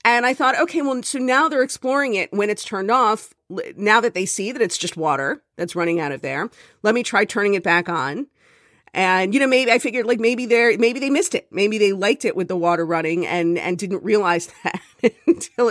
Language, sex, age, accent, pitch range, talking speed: English, female, 40-59, American, 175-240 Hz, 235 wpm